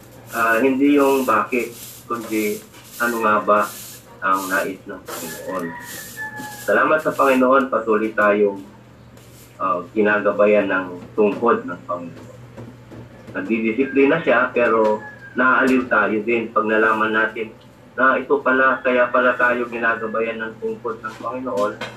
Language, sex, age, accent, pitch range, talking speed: Filipino, male, 30-49, native, 110-125 Hz, 115 wpm